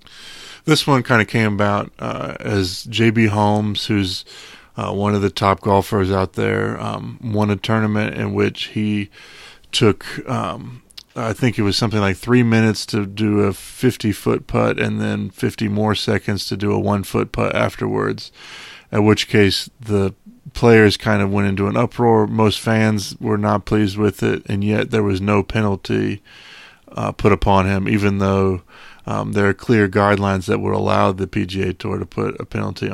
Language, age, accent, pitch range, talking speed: English, 30-49, American, 100-110 Hz, 175 wpm